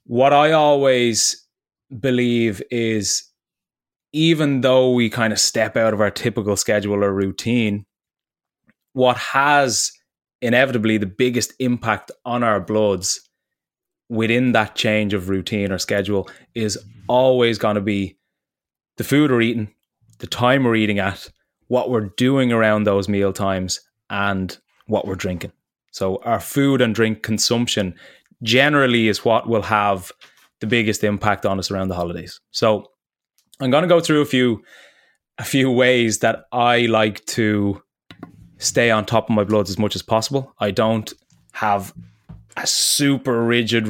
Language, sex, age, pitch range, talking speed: English, male, 20-39, 105-125 Hz, 150 wpm